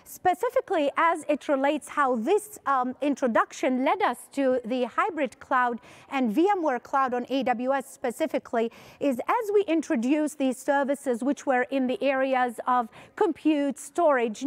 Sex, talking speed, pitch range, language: female, 140 wpm, 250-305 Hz, English